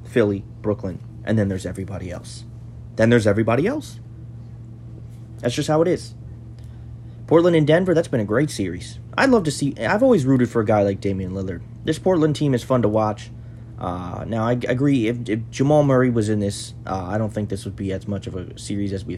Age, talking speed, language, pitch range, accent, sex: 30-49, 220 wpm, English, 105-120 Hz, American, male